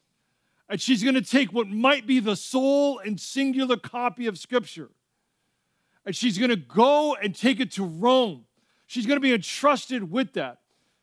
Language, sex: English, male